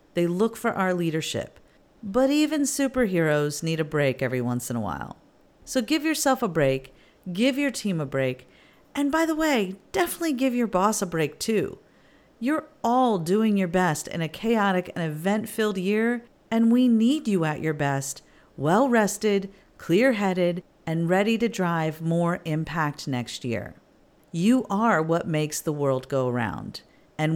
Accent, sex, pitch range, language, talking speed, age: American, female, 155-235 Hz, English, 160 wpm, 40-59